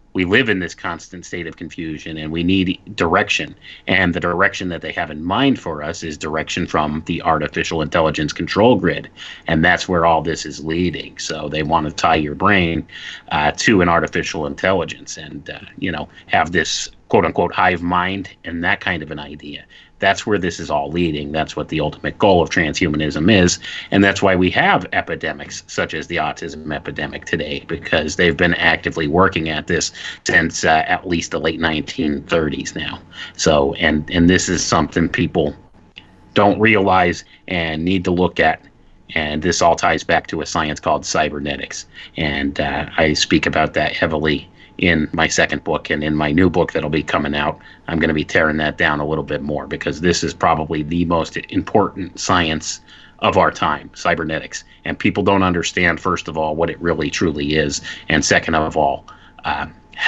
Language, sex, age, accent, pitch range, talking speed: English, male, 30-49, American, 75-90 Hz, 190 wpm